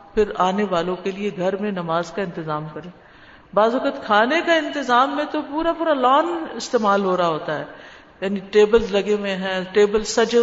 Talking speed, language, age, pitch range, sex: 190 wpm, Urdu, 50-69, 195-255 Hz, female